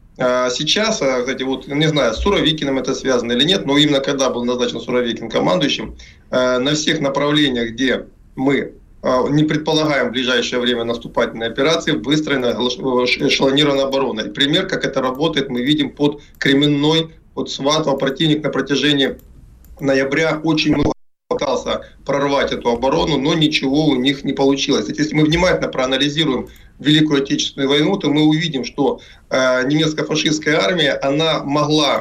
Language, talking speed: Russian, 145 wpm